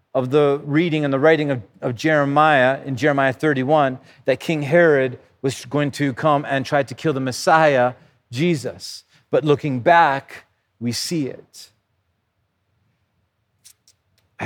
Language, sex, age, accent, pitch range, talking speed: English, male, 40-59, American, 135-170 Hz, 135 wpm